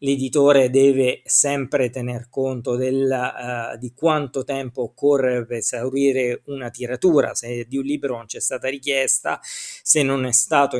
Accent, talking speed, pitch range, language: native, 135 wpm, 125-160 Hz, Italian